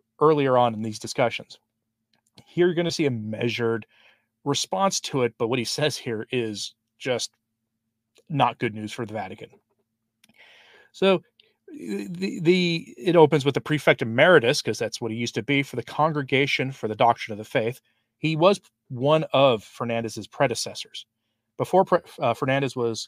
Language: English